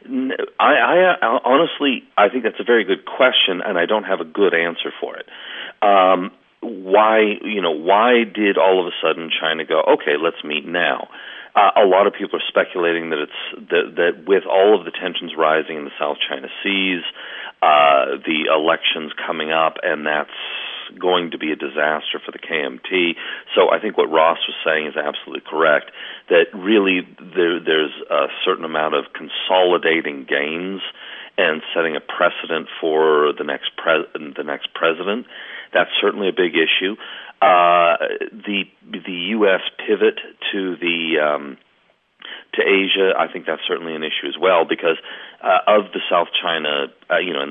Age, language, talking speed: 40-59, English, 175 wpm